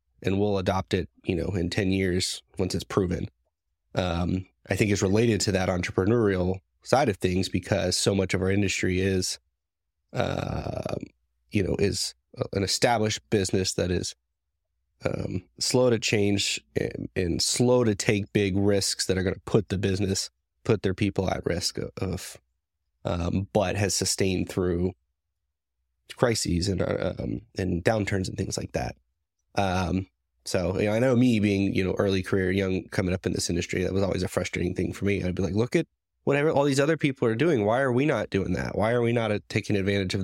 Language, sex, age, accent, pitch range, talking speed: English, male, 30-49, American, 90-105 Hz, 190 wpm